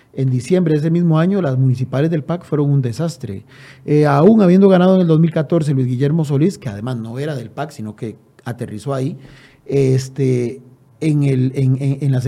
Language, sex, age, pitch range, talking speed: Spanish, male, 40-59, 130-165 Hz, 195 wpm